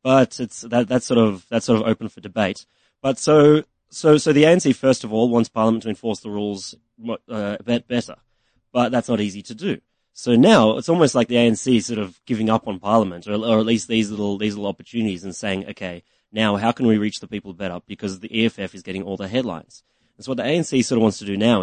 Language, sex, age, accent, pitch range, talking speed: English, male, 30-49, Australian, 100-120 Hz, 240 wpm